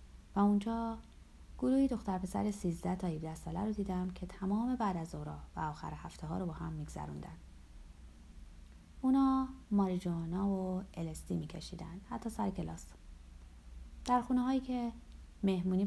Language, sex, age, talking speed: Persian, female, 30-49, 140 wpm